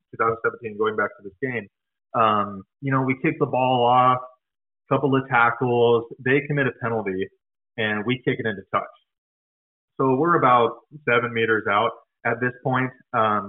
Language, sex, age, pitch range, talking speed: English, male, 30-49, 110-145 Hz, 165 wpm